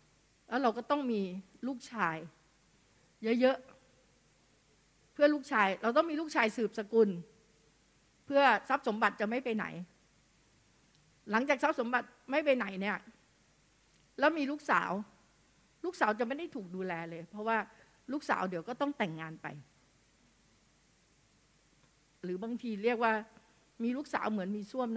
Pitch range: 180-255 Hz